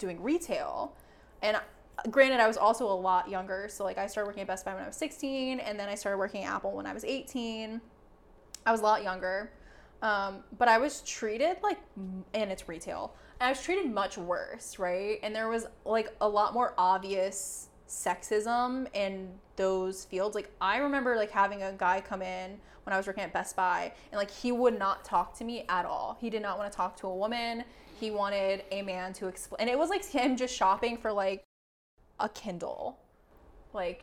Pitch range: 190-230 Hz